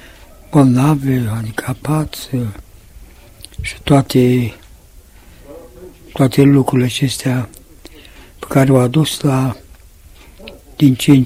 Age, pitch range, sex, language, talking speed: 60-79, 95-140 Hz, male, Romanian, 80 wpm